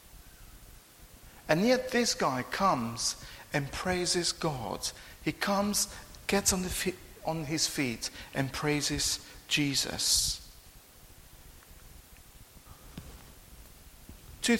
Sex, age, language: male, 50-69, English